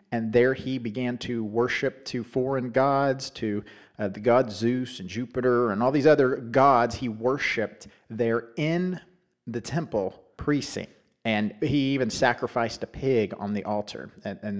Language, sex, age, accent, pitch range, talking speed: English, male, 40-59, American, 105-130 Hz, 160 wpm